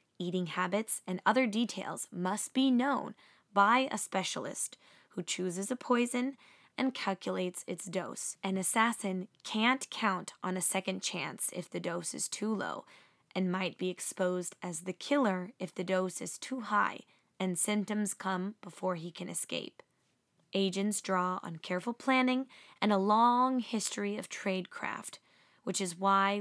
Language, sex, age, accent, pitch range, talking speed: English, female, 20-39, American, 185-230 Hz, 150 wpm